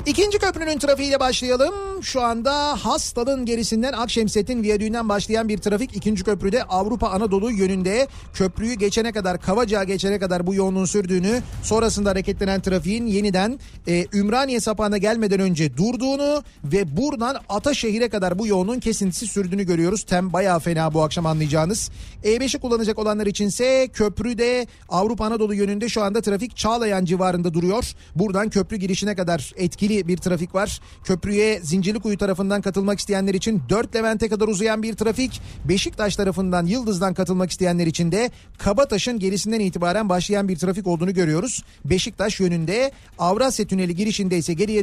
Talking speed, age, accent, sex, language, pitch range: 145 wpm, 40-59, native, male, Turkish, 185-230 Hz